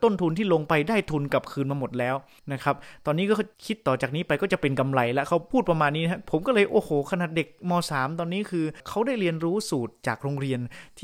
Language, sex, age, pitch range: Thai, male, 20-39, 130-170 Hz